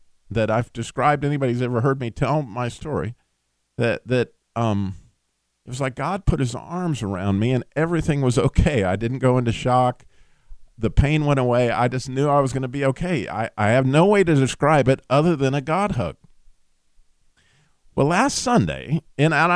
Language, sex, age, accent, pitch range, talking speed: English, male, 50-69, American, 95-140 Hz, 190 wpm